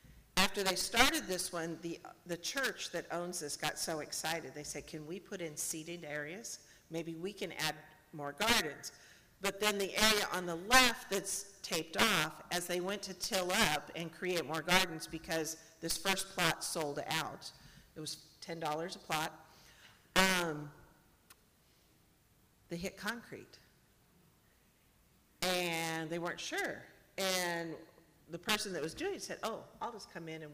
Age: 50-69